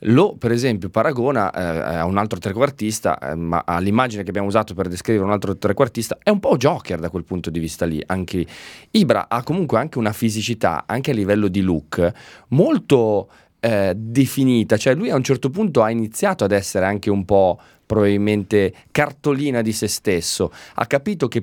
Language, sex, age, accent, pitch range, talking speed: Italian, male, 30-49, native, 90-115 Hz, 190 wpm